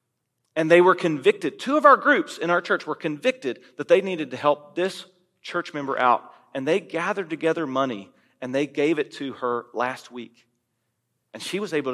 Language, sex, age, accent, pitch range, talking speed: English, male, 40-59, American, 130-200 Hz, 195 wpm